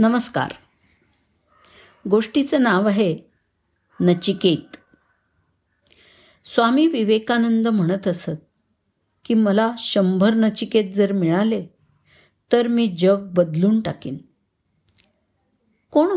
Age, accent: 50-69, native